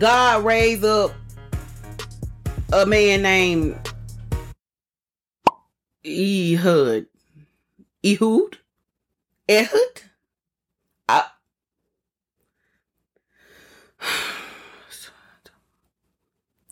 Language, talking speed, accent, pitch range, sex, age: English, 35 wpm, American, 145-220 Hz, female, 30-49